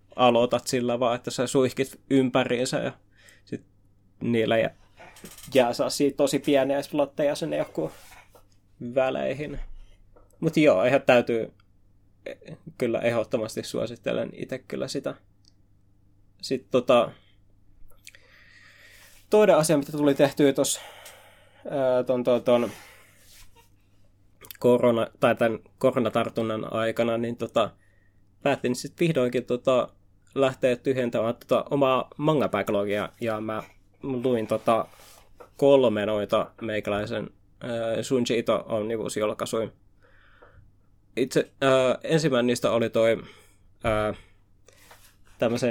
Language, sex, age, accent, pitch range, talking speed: Finnish, male, 20-39, native, 100-130 Hz, 85 wpm